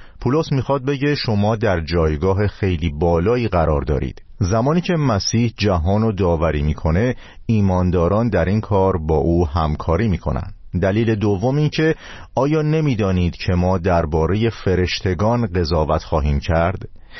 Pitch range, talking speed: 85-115 Hz, 135 wpm